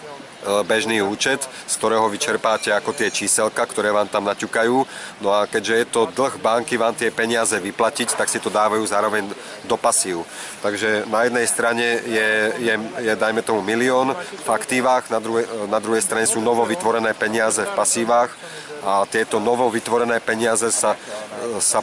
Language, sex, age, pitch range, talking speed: Czech, male, 30-49, 110-120 Hz, 155 wpm